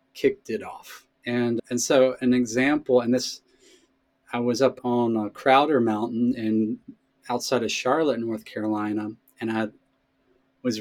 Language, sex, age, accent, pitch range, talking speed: English, male, 30-49, American, 110-135 Hz, 145 wpm